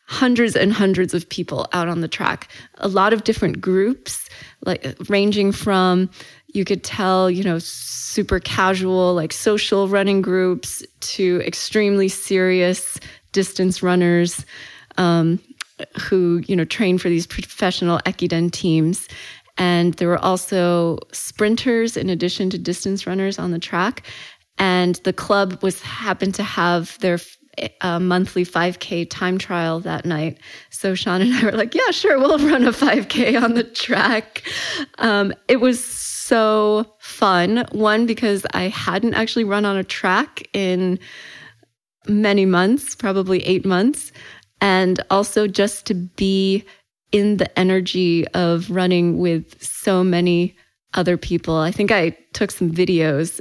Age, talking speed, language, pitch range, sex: 20-39, 145 wpm, English, 180-210 Hz, female